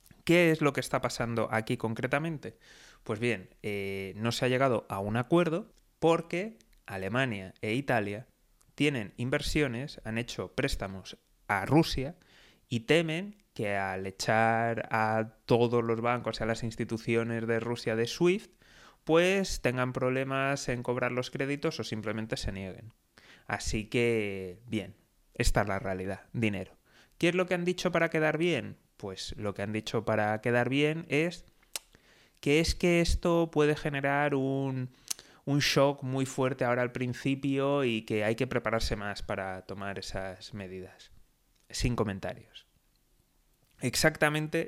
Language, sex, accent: Spanish, male, Spanish